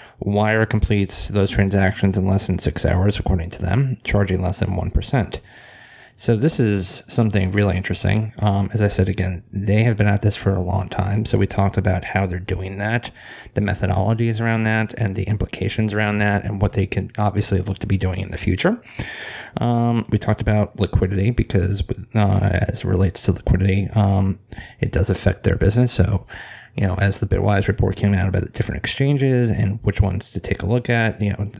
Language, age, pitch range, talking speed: English, 20-39, 95-110 Hz, 200 wpm